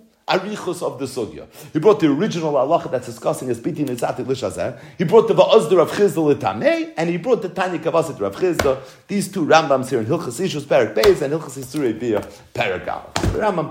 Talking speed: 190 wpm